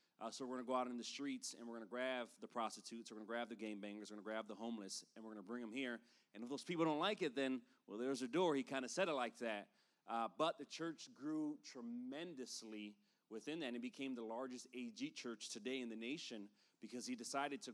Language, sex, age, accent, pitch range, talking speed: English, male, 30-49, American, 120-155 Hz, 265 wpm